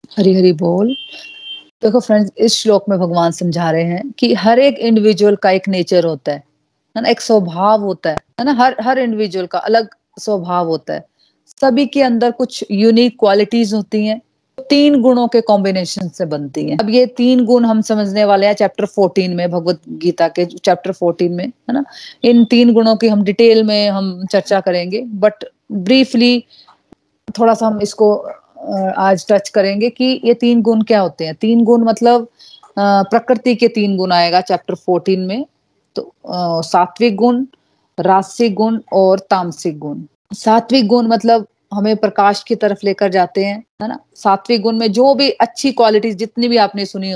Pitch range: 190-235 Hz